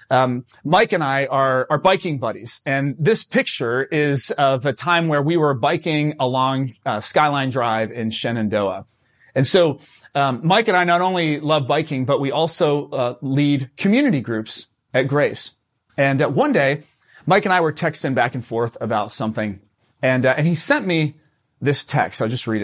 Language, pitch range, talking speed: English, 120-170 Hz, 185 wpm